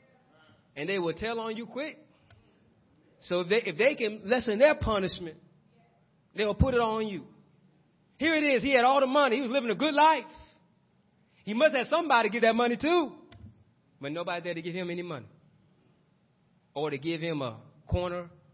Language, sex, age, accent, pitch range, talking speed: English, male, 30-49, American, 145-205 Hz, 185 wpm